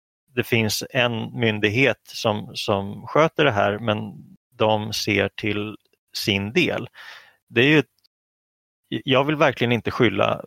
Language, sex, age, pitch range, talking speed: Swedish, male, 30-49, 100-125 Hz, 130 wpm